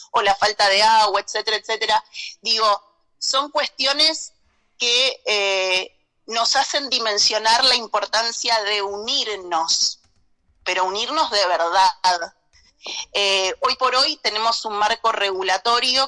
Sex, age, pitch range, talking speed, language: female, 30-49, 205-270 Hz, 115 wpm, Spanish